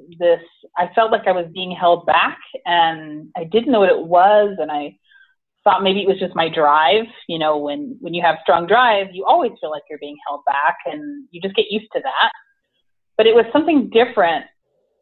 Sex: female